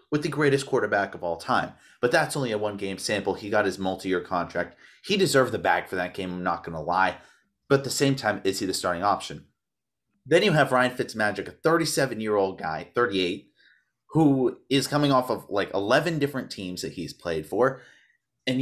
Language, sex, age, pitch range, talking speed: English, male, 30-49, 100-140 Hz, 210 wpm